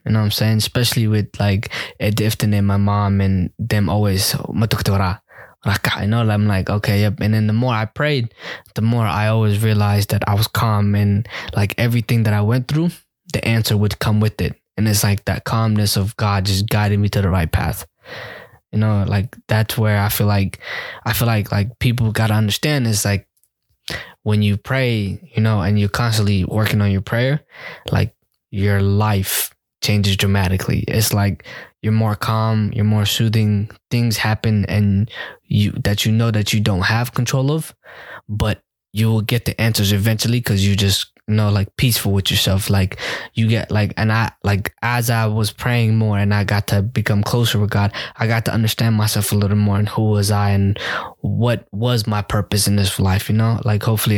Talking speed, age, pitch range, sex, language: 200 wpm, 20-39, 100-115 Hz, male, English